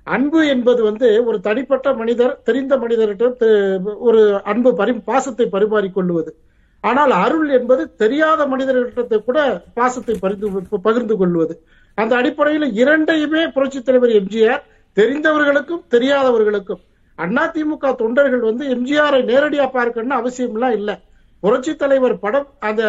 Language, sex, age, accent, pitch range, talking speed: Tamil, male, 50-69, native, 225-285 Hz, 115 wpm